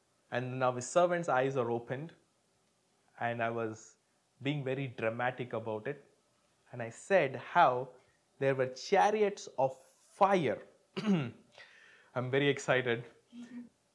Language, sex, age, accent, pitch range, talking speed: English, male, 20-39, Indian, 130-195 Hz, 115 wpm